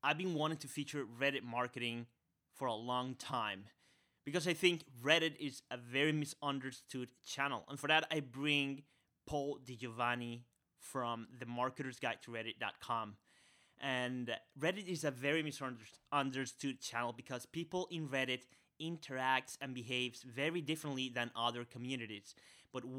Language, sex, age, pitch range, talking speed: English, male, 30-49, 120-140 Hz, 140 wpm